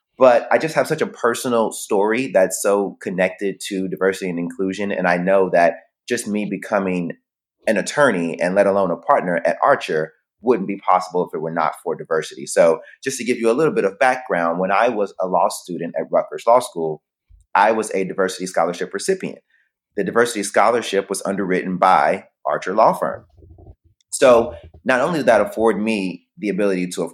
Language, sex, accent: English, male, American